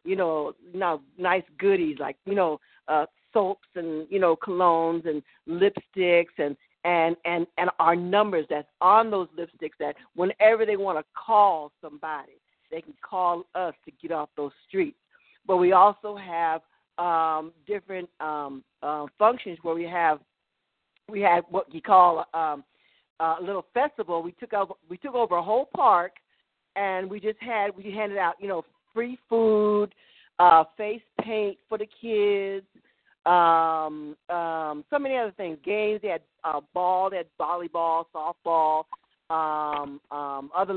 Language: English